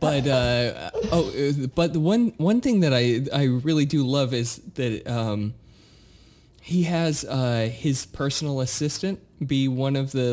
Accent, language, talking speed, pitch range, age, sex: American, English, 155 wpm, 125-160 Hz, 20-39, male